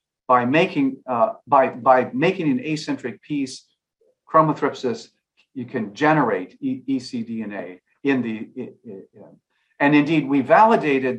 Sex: male